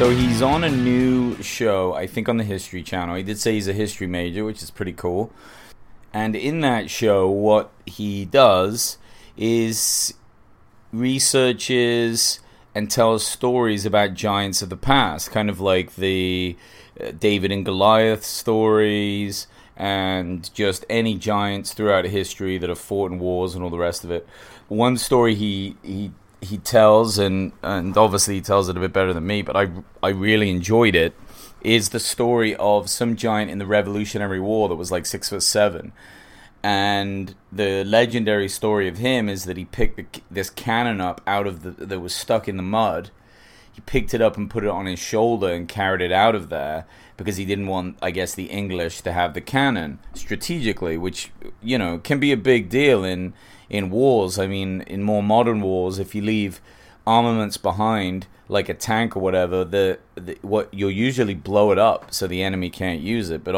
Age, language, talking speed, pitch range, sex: 30-49, English, 185 wpm, 95-110 Hz, male